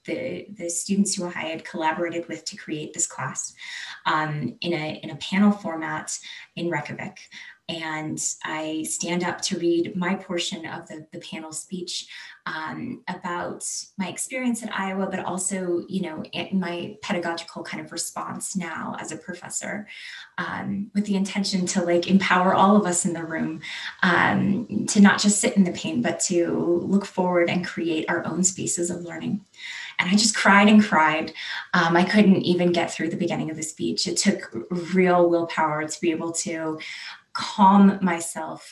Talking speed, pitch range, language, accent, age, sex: 175 wpm, 165-190 Hz, English, American, 20-39, female